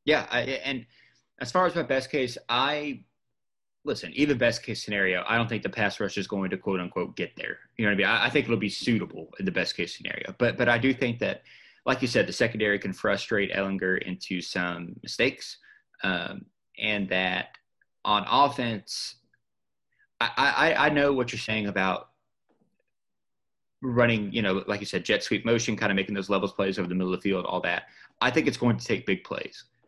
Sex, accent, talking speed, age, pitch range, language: male, American, 215 wpm, 20-39, 95-115 Hz, English